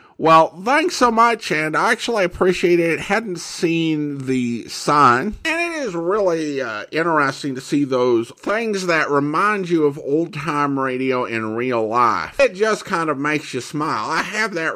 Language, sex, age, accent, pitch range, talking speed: English, male, 50-69, American, 145-210 Hz, 170 wpm